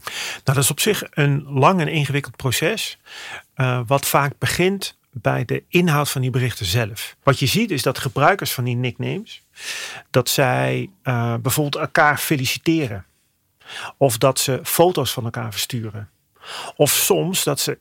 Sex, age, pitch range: male, 40-59, 125-155 Hz